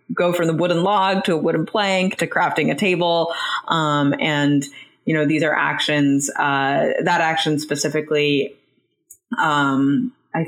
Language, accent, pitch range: English, American, 145-175 Hz